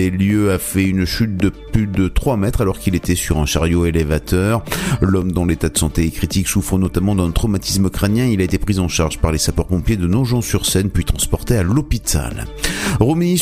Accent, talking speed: French, 210 wpm